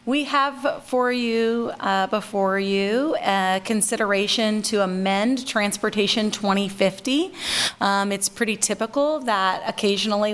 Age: 30-49